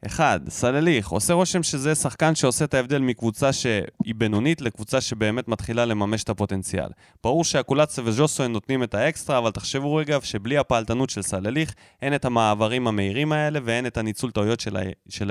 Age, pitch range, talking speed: 20-39, 110-155 Hz, 175 wpm